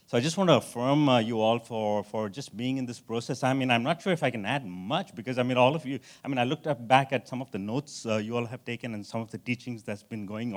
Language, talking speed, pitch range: English, 320 wpm, 110-140 Hz